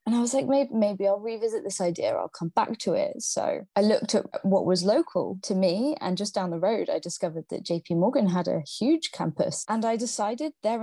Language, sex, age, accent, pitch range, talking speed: English, female, 20-39, British, 175-230 Hz, 235 wpm